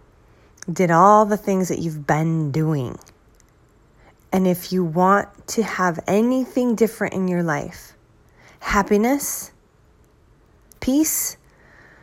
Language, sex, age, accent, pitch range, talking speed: English, female, 30-49, American, 175-230 Hz, 105 wpm